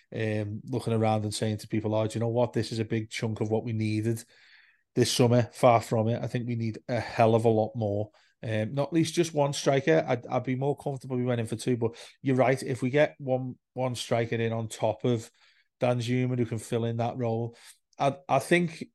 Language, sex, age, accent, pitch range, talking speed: English, male, 30-49, British, 110-130 Hz, 245 wpm